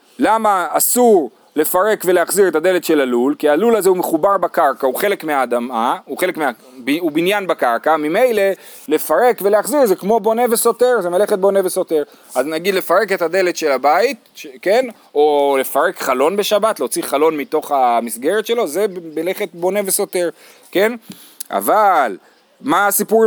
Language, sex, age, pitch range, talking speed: Hebrew, male, 30-49, 170-250 Hz, 150 wpm